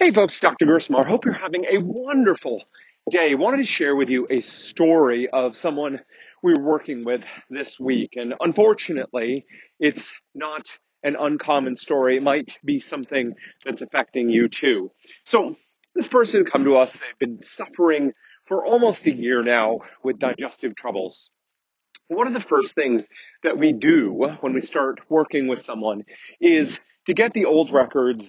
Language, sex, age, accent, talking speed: English, male, 40-59, American, 160 wpm